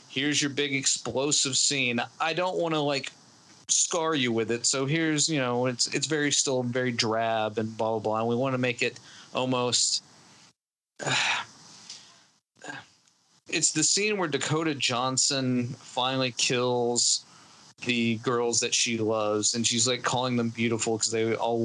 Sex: male